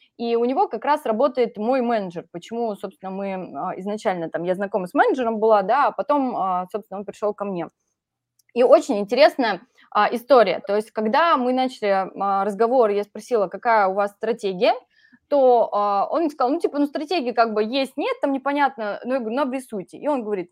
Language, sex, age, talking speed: Russian, female, 20-39, 185 wpm